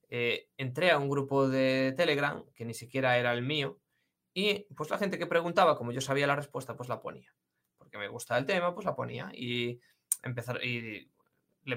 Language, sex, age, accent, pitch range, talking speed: Spanish, male, 20-39, Spanish, 120-150 Hz, 200 wpm